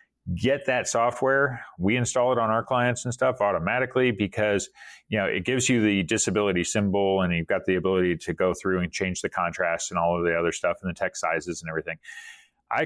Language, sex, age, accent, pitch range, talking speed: English, male, 40-59, American, 95-130 Hz, 215 wpm